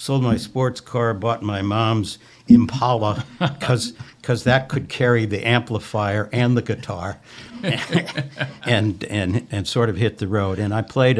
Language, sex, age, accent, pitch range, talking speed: English, male, 60-79, American, 105-125 Hz, 155 wpm